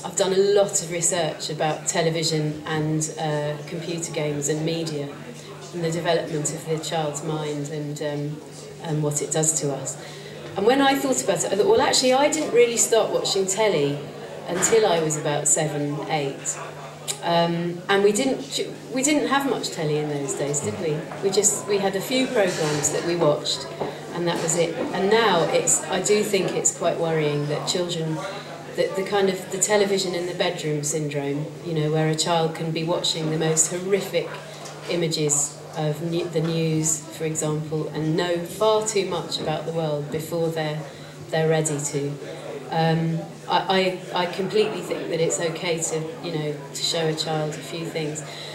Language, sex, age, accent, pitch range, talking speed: English, female, 40-59, British, 155-185 Hz, 185 wpm